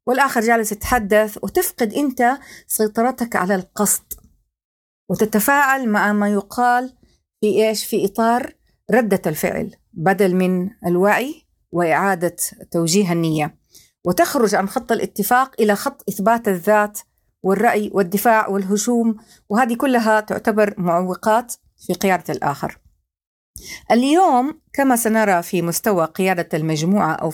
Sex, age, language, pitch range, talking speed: female, 40-59, Arabic, 185-240 Hz, 110 wpm